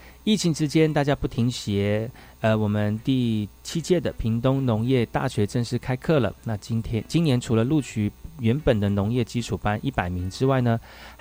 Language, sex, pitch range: Chinese, male, 105-135 Hz